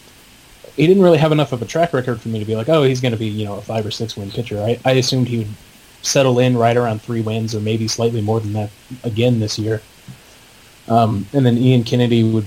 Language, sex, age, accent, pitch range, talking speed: English, male, 20-39, American, 110-135 Hz, 255 wpm